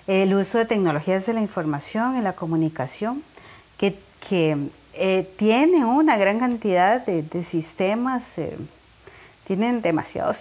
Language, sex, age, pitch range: Spanish, female, 30-49, 175-225 Hz